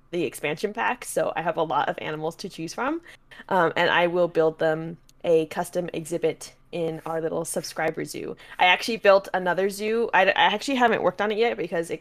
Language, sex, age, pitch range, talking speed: English, female, 20-39, 160-200 Hz, 210 wpm